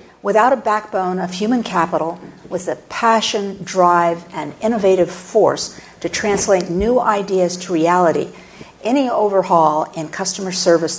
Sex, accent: female, American